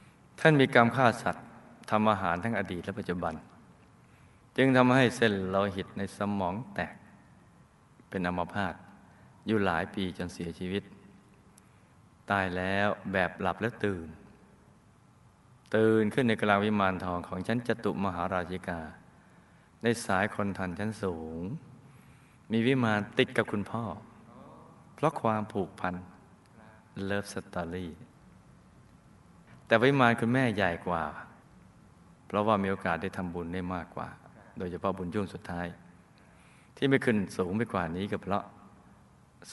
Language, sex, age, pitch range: Thai, male, 20-39, 90-110 Hz